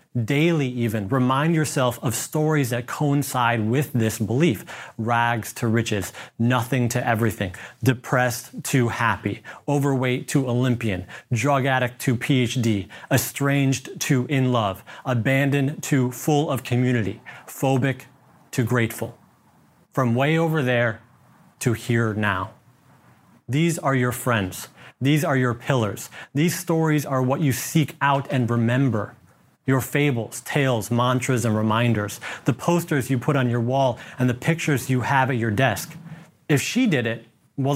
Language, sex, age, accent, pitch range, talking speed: English, male, 30-49, American, 120-145 Hz, 140 wpm